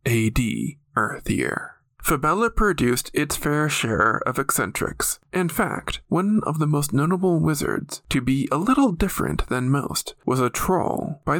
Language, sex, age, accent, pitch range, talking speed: English, male, 20-39, American, 135-175 Hz, 145 wpm